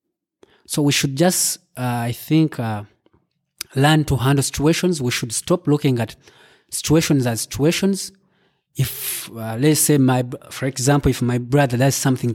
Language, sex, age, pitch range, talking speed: English, male, 20-39, 125-155 Hz, 155 wpm